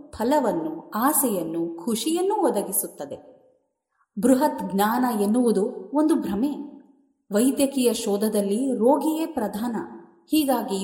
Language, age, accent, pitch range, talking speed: Kannada, 30-49, native, 200-275 Hz, 80 wpm